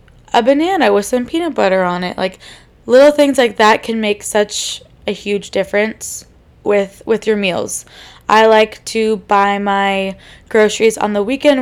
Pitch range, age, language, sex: 200-235 Hz, 20-39, English, female